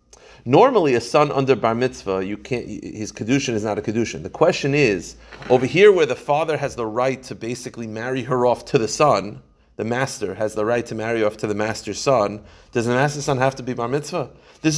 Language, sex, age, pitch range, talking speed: English, male, 30-49, 115-155 Hz, 225 wpm